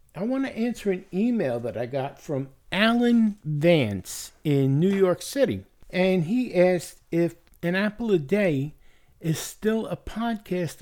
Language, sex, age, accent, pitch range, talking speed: English, male, 60-79, American, 150-200 Hz, 155 wpm